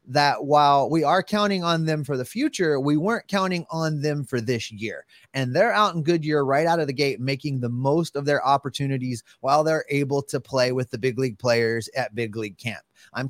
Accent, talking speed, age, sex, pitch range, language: American, 220 wpm, 30-49, male, 125-160 Hz, English